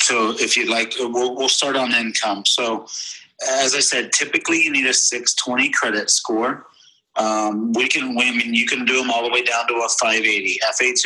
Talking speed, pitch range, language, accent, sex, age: 195 wpm, 110-130 Hz, English, American, male, 50-69